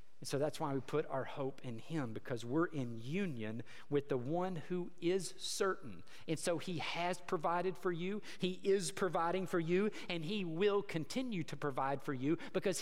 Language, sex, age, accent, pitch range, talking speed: English, male, 50-69, American, 145-195 Hz, 190 wpm